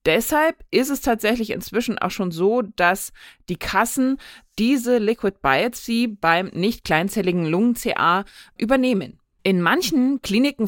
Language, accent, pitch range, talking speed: German, German, 175-235 Hz, 120 wpm